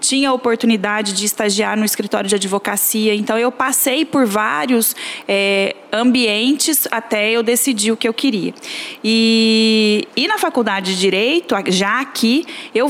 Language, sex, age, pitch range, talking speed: Portuguese, female, 20-39, 210-255 Hz, 150 wpm